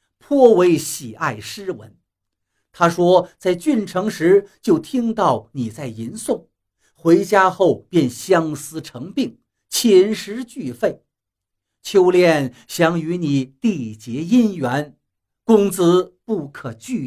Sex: male